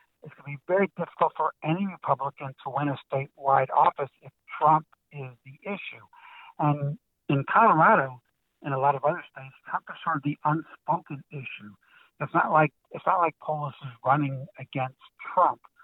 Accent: American